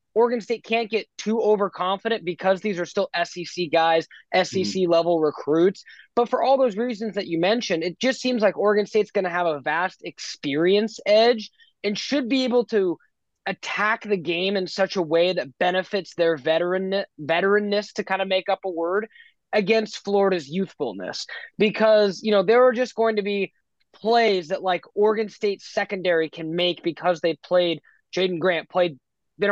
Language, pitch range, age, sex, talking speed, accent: English, 170-210 Hz, 20-39, male, 175 wpm, American